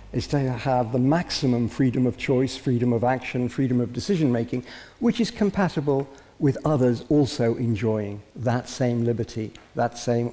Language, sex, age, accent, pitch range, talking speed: English, male, 60-79, British, 115-135 Hz, 150 wpm